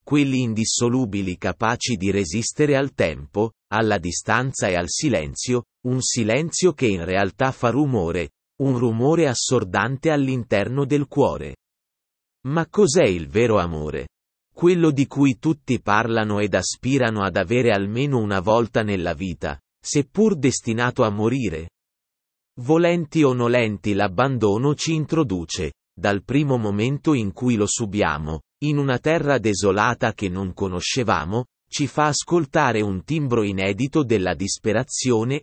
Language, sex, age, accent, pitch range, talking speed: Italian, male, 30-49, native, 100-140 Hz, 130 wpm